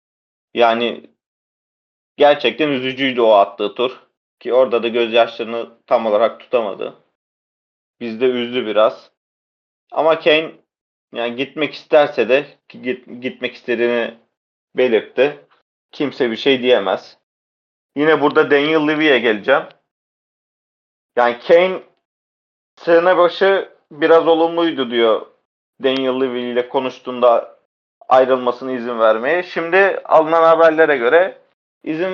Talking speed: 100 wpm